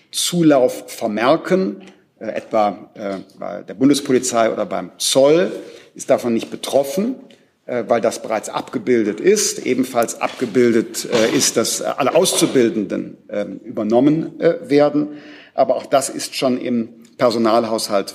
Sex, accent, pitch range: male, German, 110-135 Hz